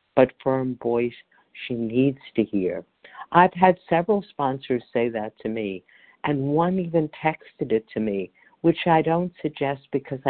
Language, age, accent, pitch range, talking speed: English, 50-69, American, 120-145 Hz, 155 wpm